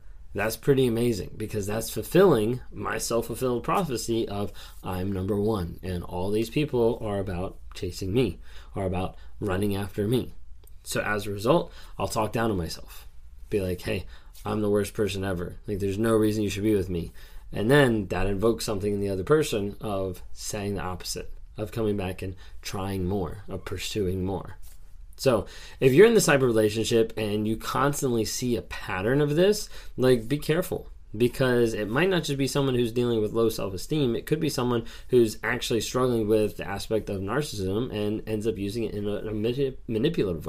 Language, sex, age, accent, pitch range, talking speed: English, male, 20-39, American, 95-120 Hz, 185 wpm